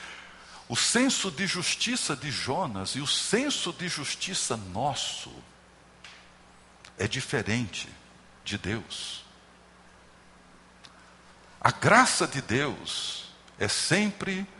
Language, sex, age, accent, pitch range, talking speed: Portuguese, male, 60-79, Brazilian, 100-155 Hz, 90 wpm